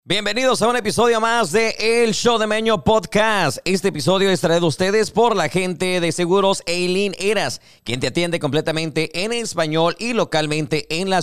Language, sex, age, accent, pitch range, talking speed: Spanish, male, 40-59, Mexican, 150-195 Hz, 180 wpm